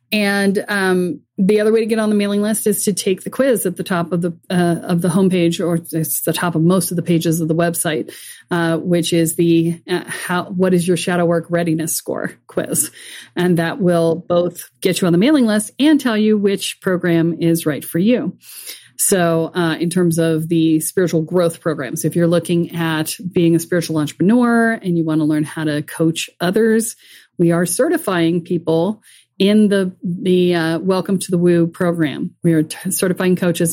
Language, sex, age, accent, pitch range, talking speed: English, female, 40-59, American, 165-200 Hz, 200 wpm